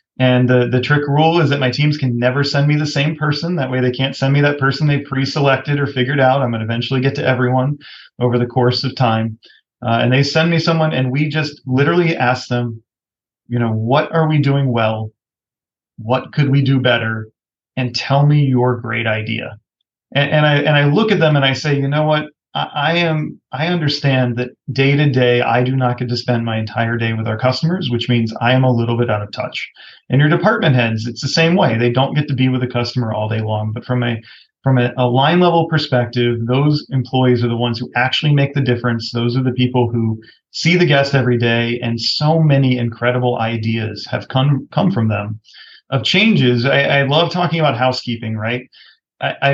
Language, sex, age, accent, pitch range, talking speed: English, male, 30-49, American, 120-145 Hz, 220 wpm